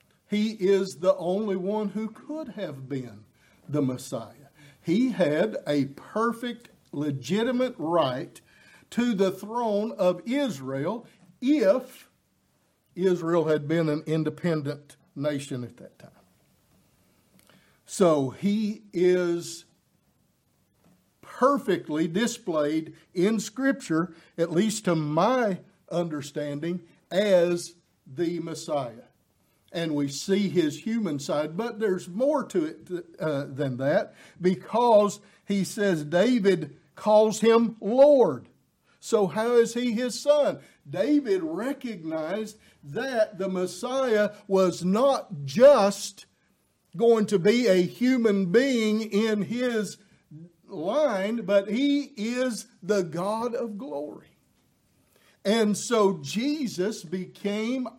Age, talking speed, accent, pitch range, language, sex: 50-69, 105 wpm, American, 165-230 Hz, English, male